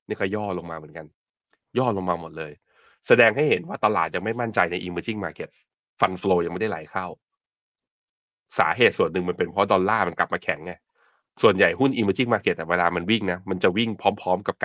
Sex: male